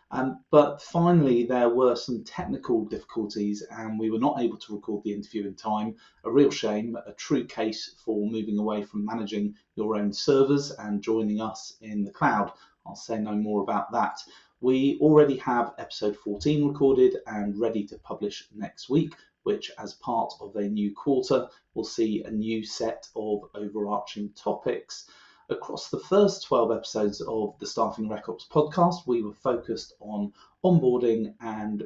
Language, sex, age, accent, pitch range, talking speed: English, male, 30-49, British, 105-150 Hz, 170 wpm